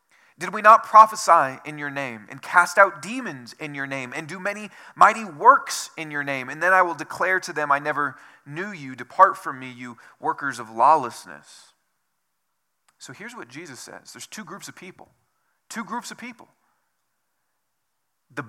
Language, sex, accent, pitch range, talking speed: English, male, American, 125-205 Hz, 180 wpm